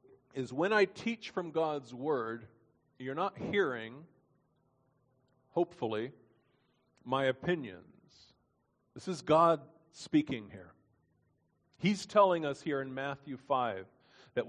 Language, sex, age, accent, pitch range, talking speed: English, male, 40-59, American, 145-195 Hz, 110 wpm